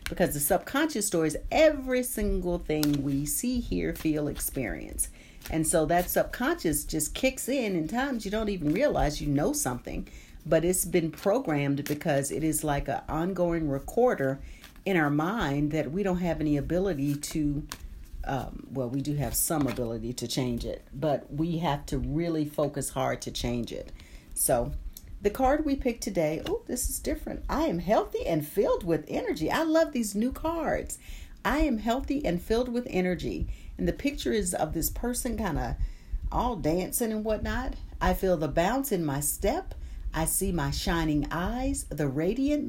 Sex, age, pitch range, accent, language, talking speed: female, 50-69, 145-240 Hz, American, English, 175 wpm